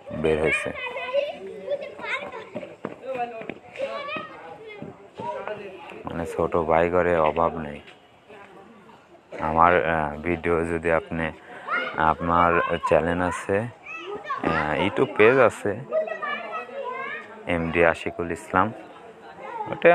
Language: Bengali